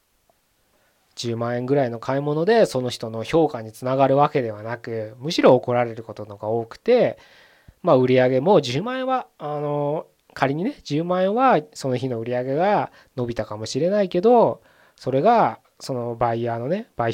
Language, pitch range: Japanese, 120-175 Hz